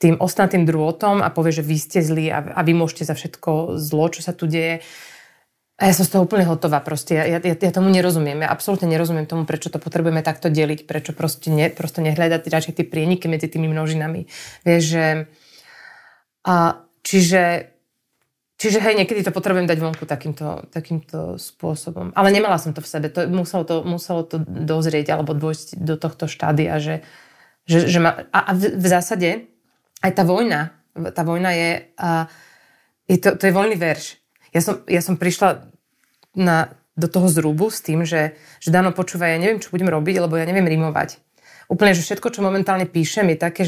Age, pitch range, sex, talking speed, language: 30-49, 160-185 Hz, female, 185 wpm, Slovak